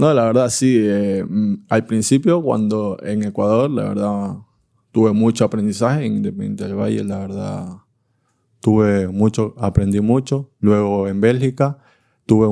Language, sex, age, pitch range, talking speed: German, male, 20-39, 100-115 Hz, 140 wpm